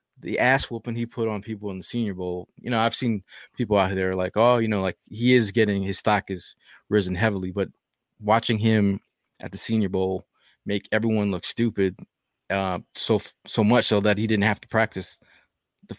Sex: male